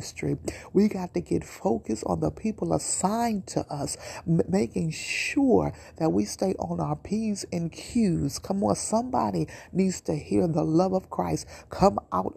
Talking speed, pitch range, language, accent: 160 wpm, 155-205 Hz, English, American